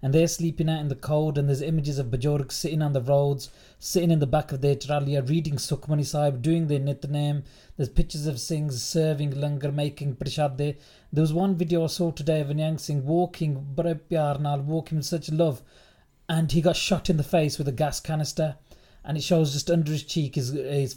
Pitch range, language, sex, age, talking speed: 140-160 Hz, English, male, 30-49, 210 wpm